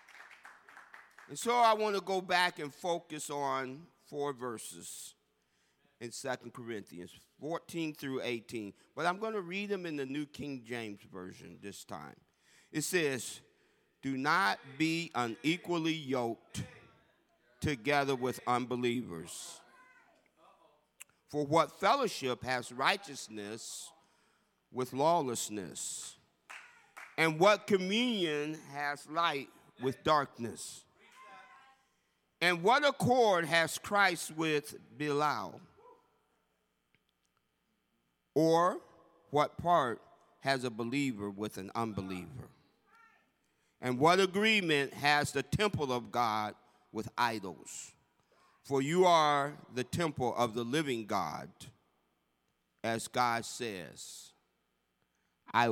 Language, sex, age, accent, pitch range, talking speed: English, male, 50-69, American, 115-165 Hz, 100 wpm